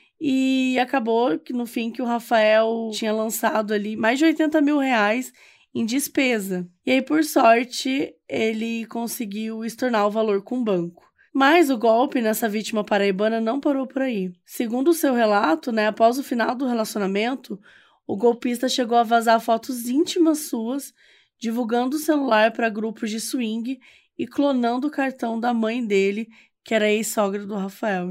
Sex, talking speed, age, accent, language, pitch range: female, 165 wpm, 20-39, Brazilian, Portuguese, 210-250 Hz